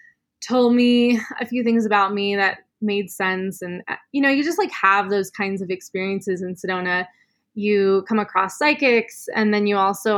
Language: English